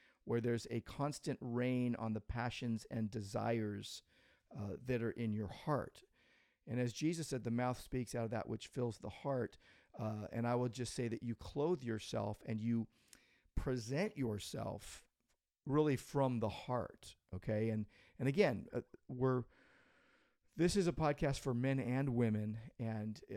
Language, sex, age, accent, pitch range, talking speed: English, male, 40-59, American, 110-130 Hz, 160 wpm